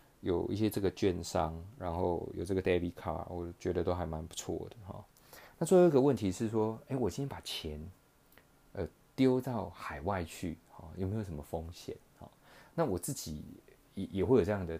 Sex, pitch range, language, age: male, 85-105 Hz, Chinese, 30-49